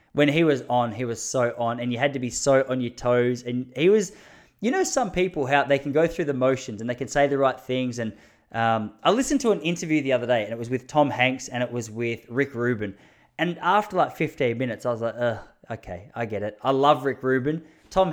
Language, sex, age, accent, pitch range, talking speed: English, male, 20-39, Australian, 120-150 Hz, 255 wpm